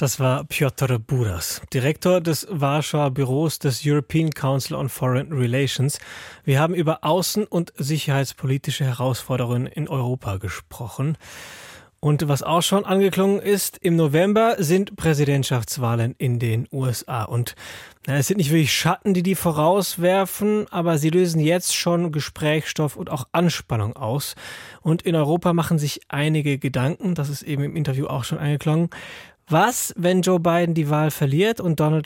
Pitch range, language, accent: 135-175 Hz, German, German